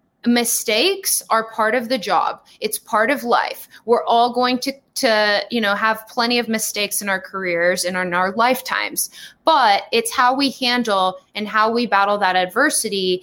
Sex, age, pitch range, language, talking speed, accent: female, 20-39, 200-245 Hz, English, 175 wpm, American